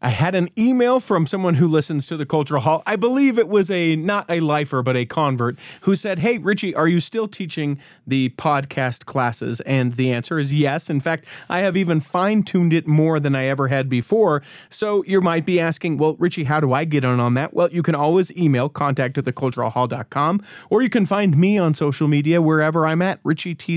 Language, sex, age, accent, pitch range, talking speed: English, male, 40-59, American, 140-190 Hz, 215 wpm